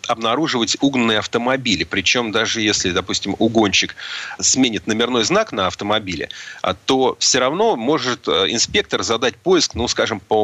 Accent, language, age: native, Russian, 30-49